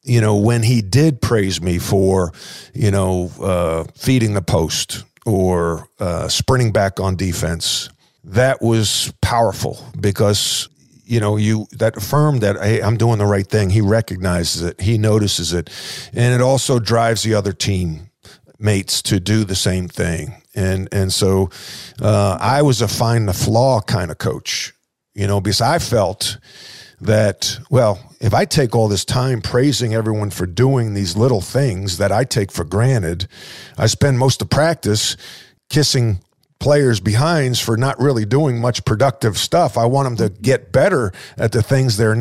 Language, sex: English, male